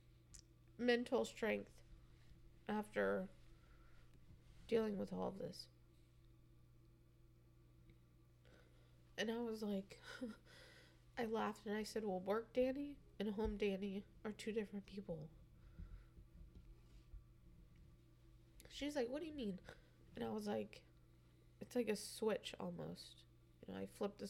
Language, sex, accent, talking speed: English, female, American, 115 wpm